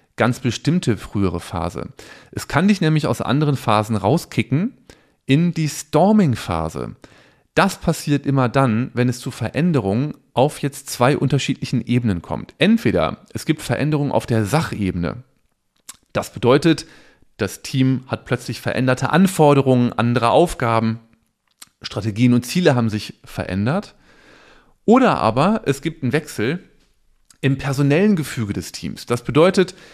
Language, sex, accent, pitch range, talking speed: German, male, German, 110-150 Hz, 130 wpm